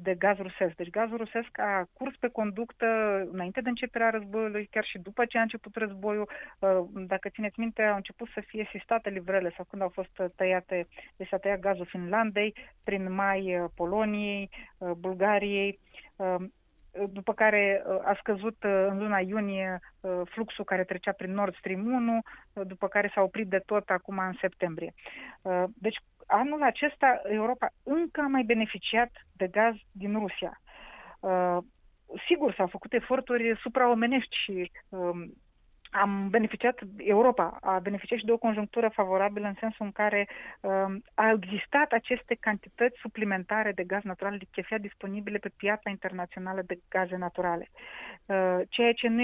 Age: 30-49